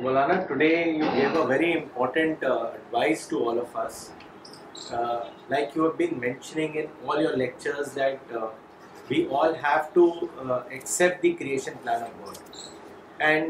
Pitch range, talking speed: 140-175 Hz, 170 wpm